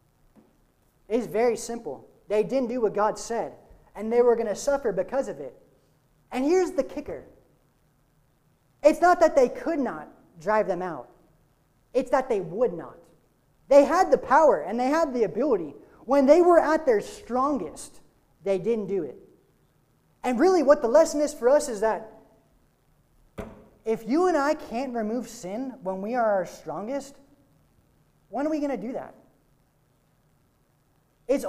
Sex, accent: male, American